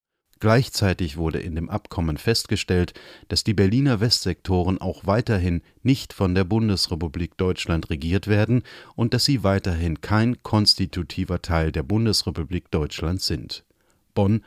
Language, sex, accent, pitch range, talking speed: German, male, German, 85-105 Hz, 130 wpm